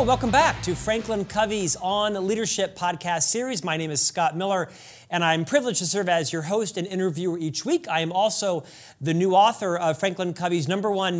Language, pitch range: English, 165-215 Hz